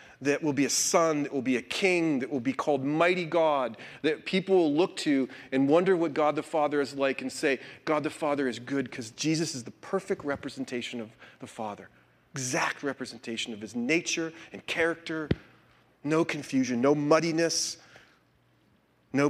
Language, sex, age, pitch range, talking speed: English, male, 40-59, 115-160 Hz, 175 wpm